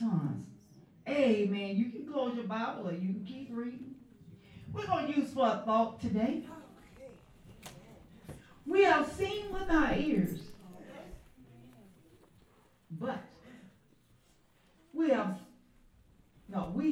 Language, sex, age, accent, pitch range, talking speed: English, female, 60-79, American, 180-270 Hz, 110 wpm